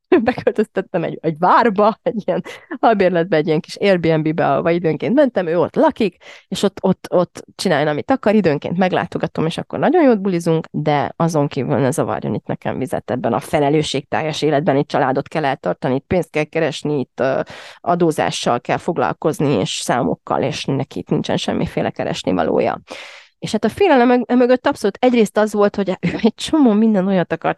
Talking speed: 175 wpm